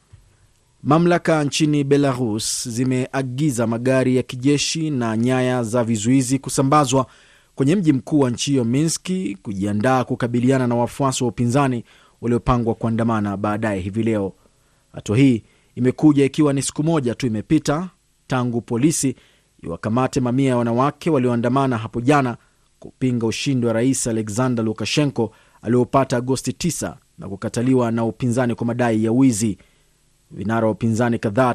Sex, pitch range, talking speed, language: male, 115-140 Hz, 125 wpm, Swahili